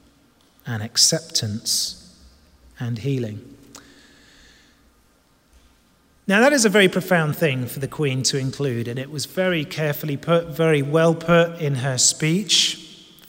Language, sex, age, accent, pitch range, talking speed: English, male, 30-49, British, 120-175 Hz, 130 wpm